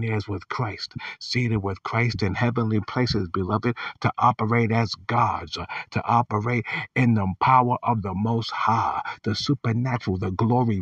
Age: 50-69